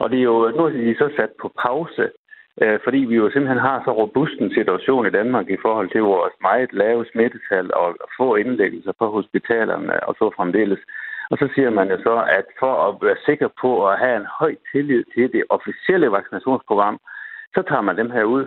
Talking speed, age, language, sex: 205 wpm, 60-79, Danish, male